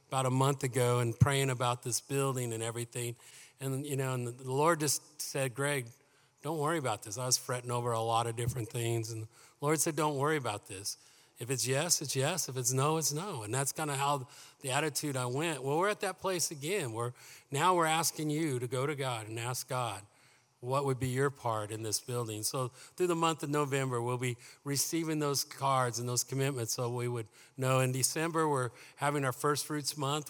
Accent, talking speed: American, 220 wpm